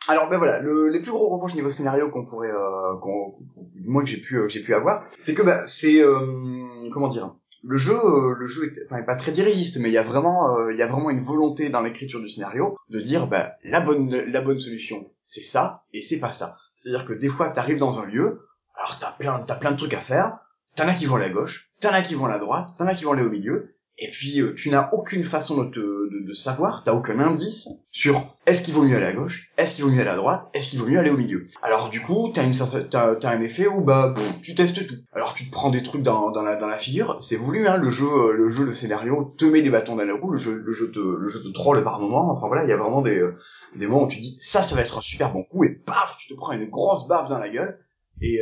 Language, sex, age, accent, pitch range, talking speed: French, male, 20-39, French, 115-155 Hz, 295 wpm